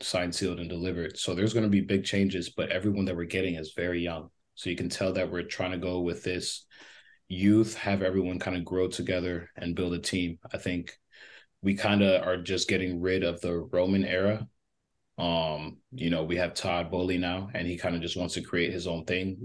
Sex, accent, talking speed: male, American, 225 wpm